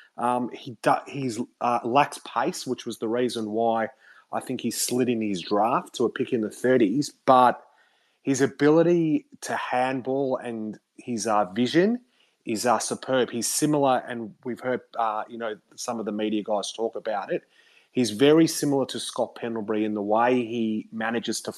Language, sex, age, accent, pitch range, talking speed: English, male, 30-49, Australian, 110-125 Hz, 180 wpm